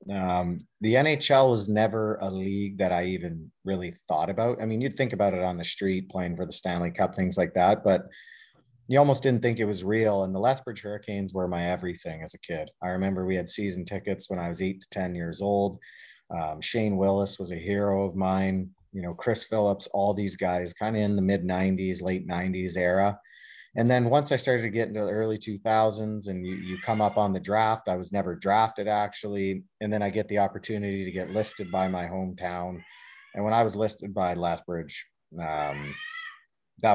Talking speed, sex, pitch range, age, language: 215 wpm, male, 90-105 Hz, 30-49, English